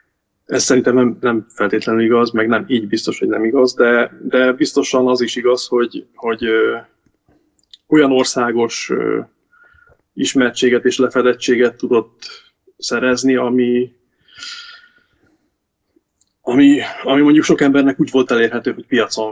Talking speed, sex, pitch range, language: 125 wpm, male, 115-145 Hz, Hungarian